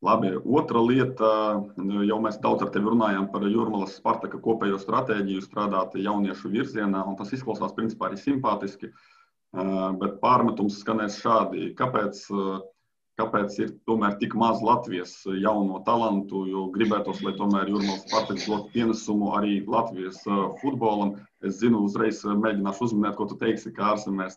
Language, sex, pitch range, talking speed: English, male, 100-110 Hz, 140 wpm